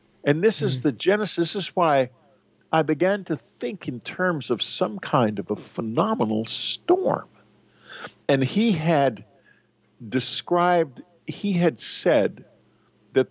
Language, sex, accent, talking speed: English, male, American, 130 wpm